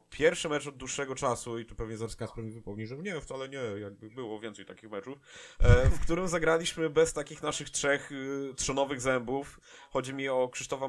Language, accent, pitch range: Polish, native, 120-140 Hz